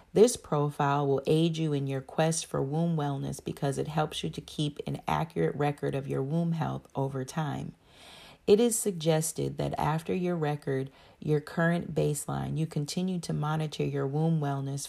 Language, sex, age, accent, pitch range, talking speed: English, female, 40-59, American, 135-160 Hz, 175 wpm